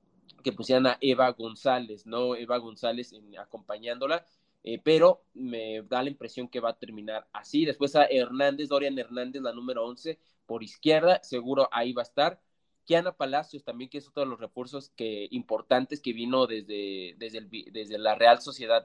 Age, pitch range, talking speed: 20-39, 120-145 Hz, 175 wpm